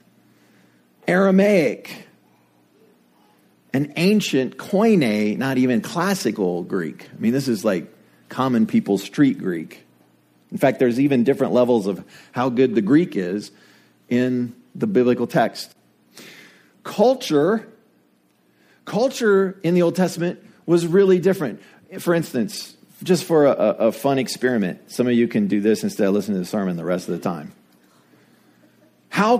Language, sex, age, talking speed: English, male, 40-59, 140 wpm